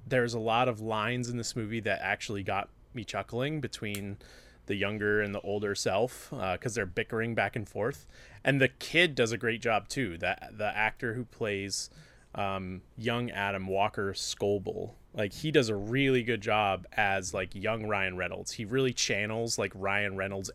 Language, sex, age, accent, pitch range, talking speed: English, male, 20-39, American, 100-120 Hz, 185 wpm